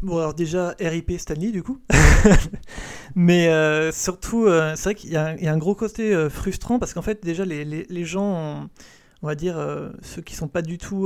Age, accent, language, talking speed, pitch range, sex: 30-49, French, French, 235 wpm, 160-190 Hz, male